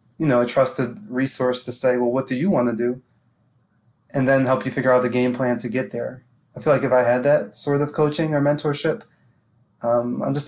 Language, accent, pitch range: English, American, 120-135 Hz